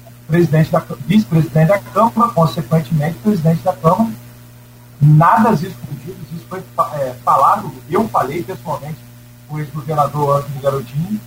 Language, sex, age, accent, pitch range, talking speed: Portuguese, male, 40-59, Brazilian, 120-185 Hz, 105 wpm